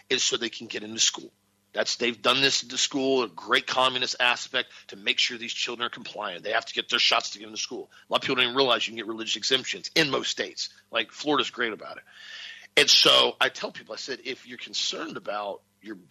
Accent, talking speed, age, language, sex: American, 250 wpm, 40-59, English, male